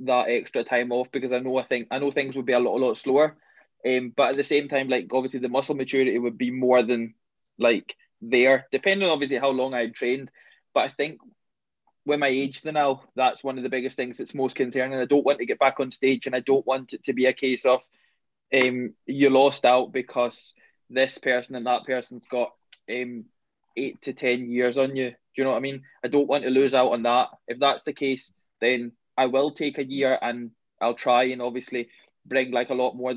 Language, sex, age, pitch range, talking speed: English, male, 20-39, 125-135 Hz, 235 wpm